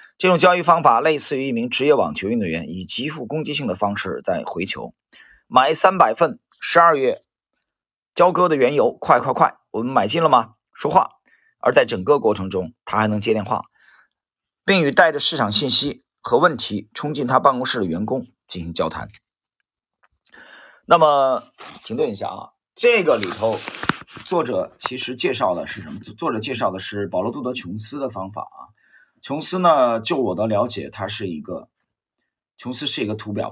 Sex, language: male, Chinese